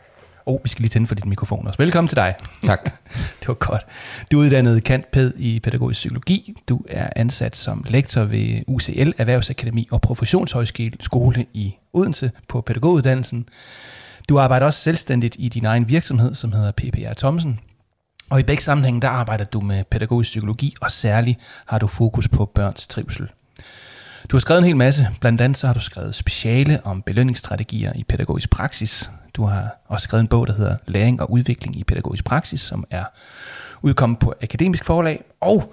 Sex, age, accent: male, 30-49, native